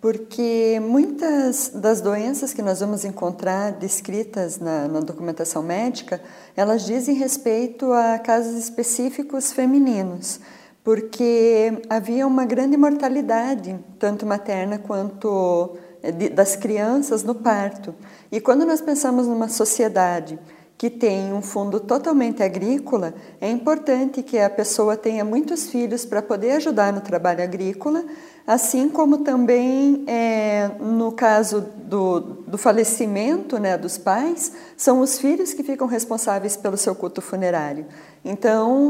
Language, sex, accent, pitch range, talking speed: Portuguese, female, Brazilian, 195-255 Hz, 125 wpm